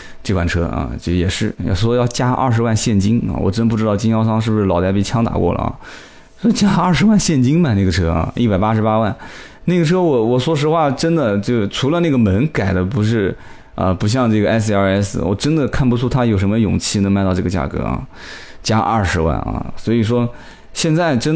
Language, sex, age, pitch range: Chinese, male, 20-39, 95-135 Hz